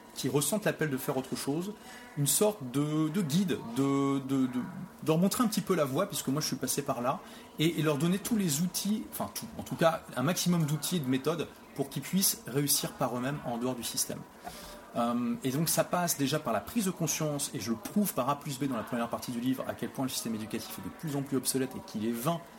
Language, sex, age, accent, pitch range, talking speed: French, male, 30-49, French, 125-170 Hz, 265 wpm